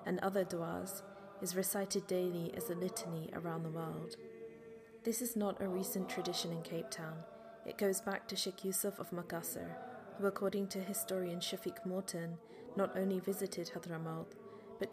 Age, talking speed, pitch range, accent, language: 20-39, 160 wpm, 180-200 Hz, British, English